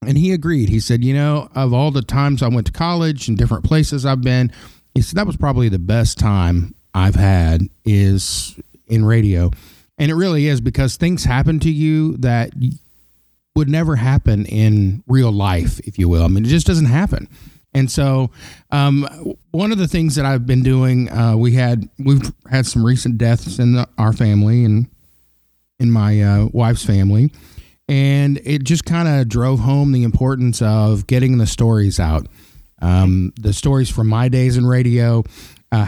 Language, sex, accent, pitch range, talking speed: English, male, American, 105-135 Hz, 180 wpm